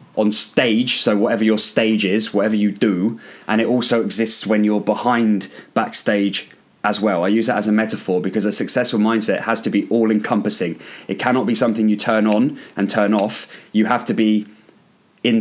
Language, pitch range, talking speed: English, 105-125 Hz, 190 wpm